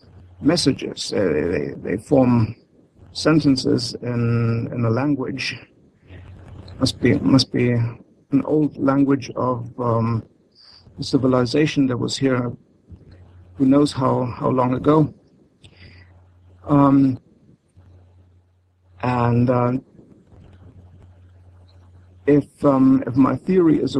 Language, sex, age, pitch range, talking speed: English, male, 60-79, 95-140 Hz, 95 wpm